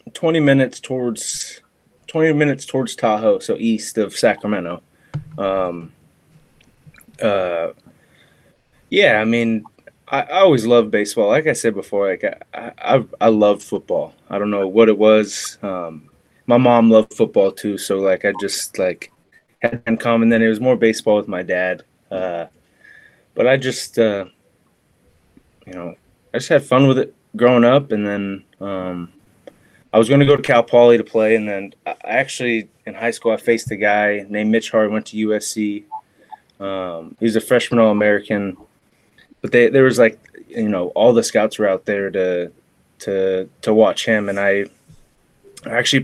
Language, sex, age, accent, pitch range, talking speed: English, male, 20-39, American, 100-120 Hz, 170 wpm